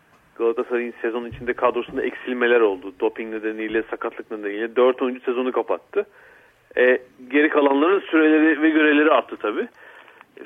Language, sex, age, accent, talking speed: Turkish, male, 40-59, native, 125 wpm